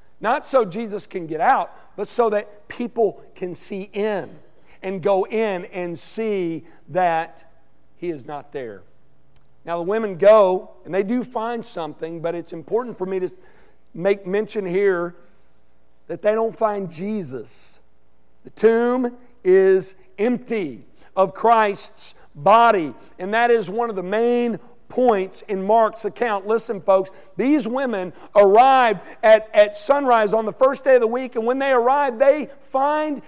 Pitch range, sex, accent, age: 185-245 Hz, male, American, 50-69